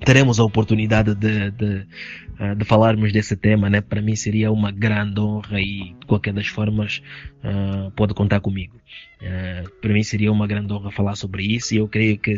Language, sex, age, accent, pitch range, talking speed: Portuguese, male, 20-39, Brazilian, 100-115 Hz, 195 wpm